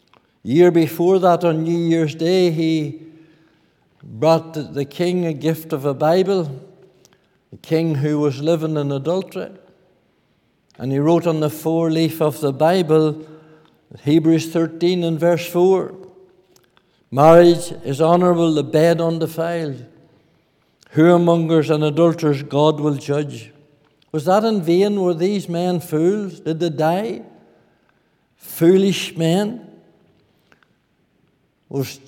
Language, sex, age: English, male, 60-79